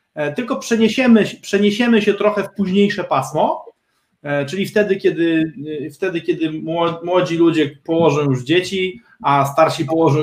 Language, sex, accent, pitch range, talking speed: Polish, male, native, 145-210 Hz, 125 wpm